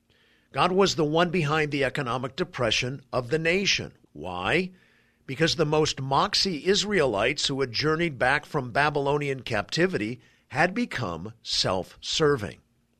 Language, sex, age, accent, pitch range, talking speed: English, male, 50-69, American, 130-165 Hz, 125 wpm